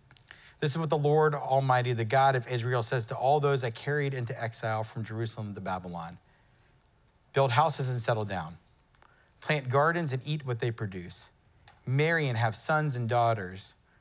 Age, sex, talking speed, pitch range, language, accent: 40-59, male, 170 wpm, 115-140 Hz, English, American